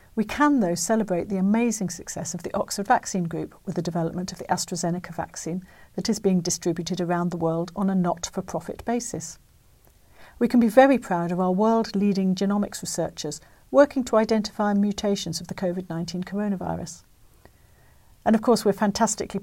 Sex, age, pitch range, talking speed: female, 50-69, 175-205 Hz, 165 wpm